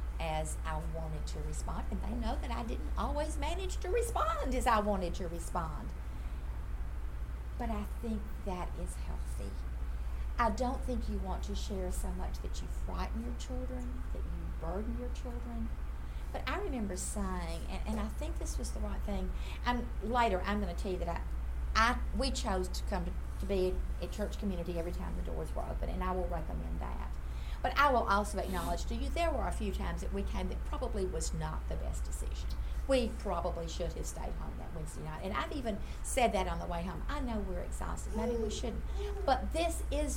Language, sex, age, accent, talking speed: English, female, 50-69, American, 205 wpm